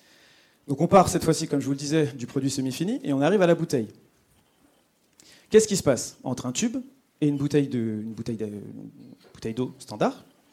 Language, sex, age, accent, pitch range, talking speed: French, male, 30-49, French, 130-165 Hz, 190 wpm